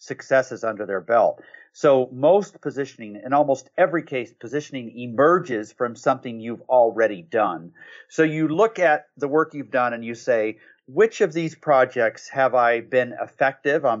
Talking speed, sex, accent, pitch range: 165 wpm, male, American, 120-150 Hz